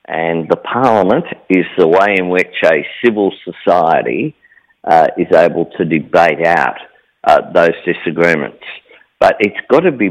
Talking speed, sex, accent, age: 150 wpm, male, Australian, 50-69